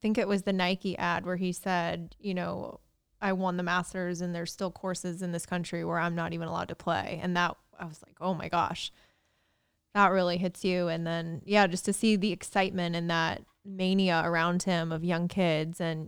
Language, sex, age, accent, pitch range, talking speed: English, female, 20-39, American, 165-185 Hz, 215 wpm